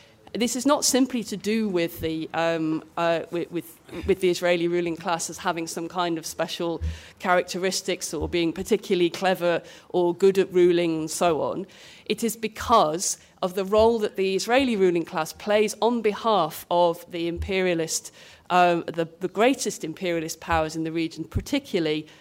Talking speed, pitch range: 170 wpm, 170-200 Hz